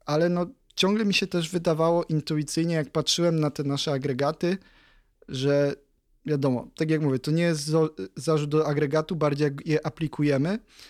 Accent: native